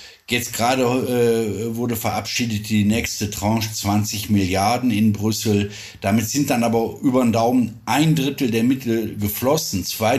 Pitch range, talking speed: 105-130 Hz, 145 wpm